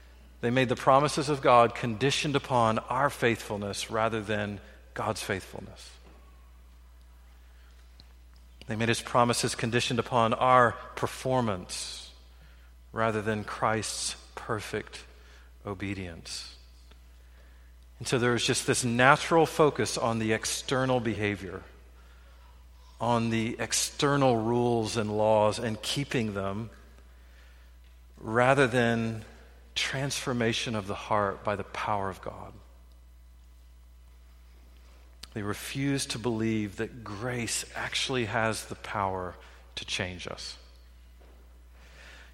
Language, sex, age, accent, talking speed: English, male, 40-59, American, 100 wpm